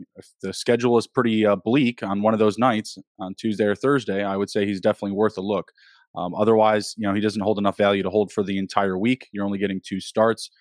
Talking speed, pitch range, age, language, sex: 250 wpm, 100-115 Hz, 20-39, English, male